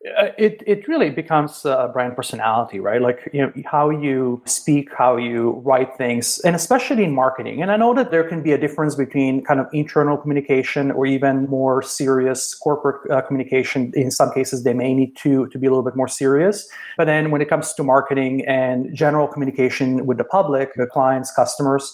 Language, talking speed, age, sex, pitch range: English, 200 wpm, 30-49, male, 130-155 Hz